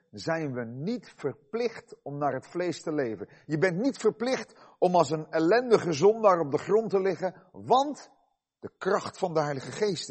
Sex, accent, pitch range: male, Dutch, 140-205 Hz